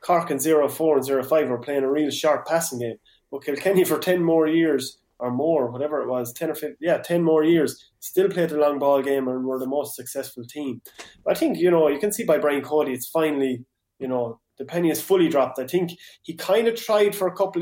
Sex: male